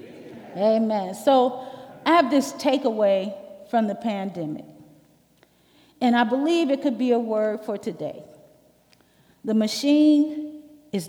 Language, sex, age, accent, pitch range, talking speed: English, female, 40-59, American, 205-275 Hz, 120 wpm